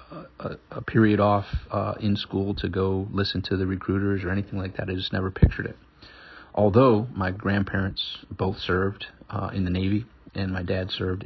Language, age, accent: English, 40-59, American